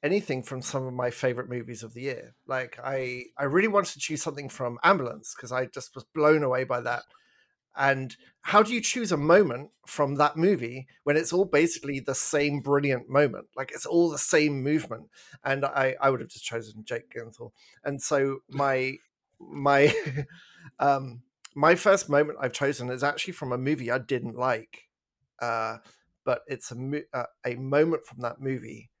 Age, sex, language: 40-59, male, English